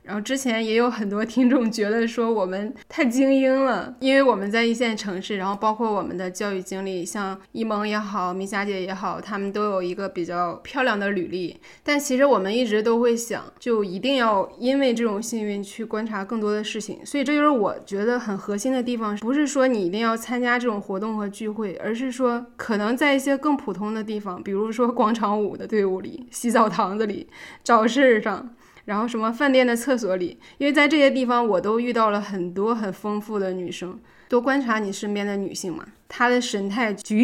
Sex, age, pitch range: female, 20-39, 200-245 Hz